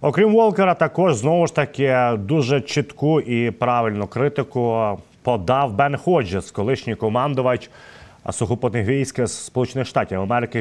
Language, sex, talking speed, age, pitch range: Ukrainian, male, 120 wpm, 30-49, 120-160 Hz